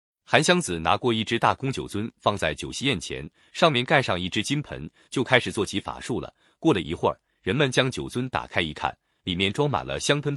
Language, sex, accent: Chinese, male, native